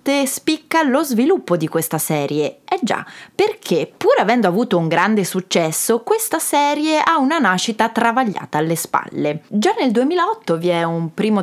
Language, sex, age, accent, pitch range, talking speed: Italian, female, 20-39, native, 175-285 Hz, 155 wpm